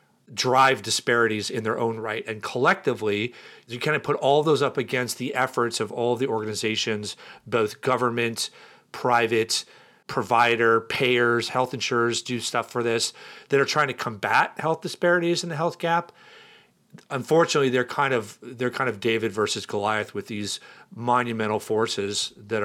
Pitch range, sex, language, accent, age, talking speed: 115-140 Hz, male, English, American, 40-59, 160 wpm